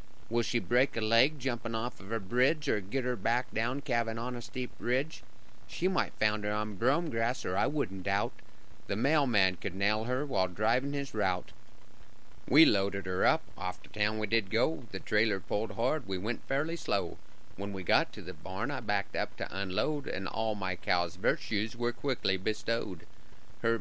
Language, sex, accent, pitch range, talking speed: English, male, American, 100-125 Hz, 195 wpm